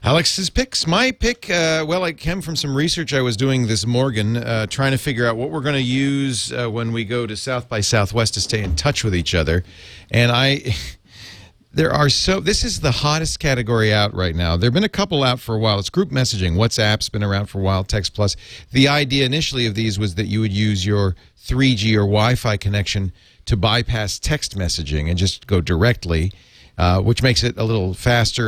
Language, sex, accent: English, male, American